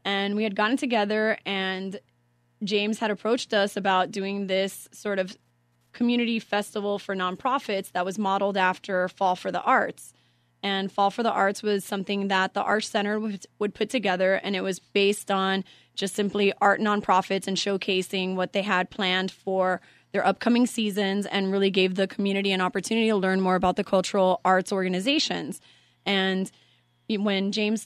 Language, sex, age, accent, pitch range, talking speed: English, female, 20-39, American, 190-210 Hz, 170 wpm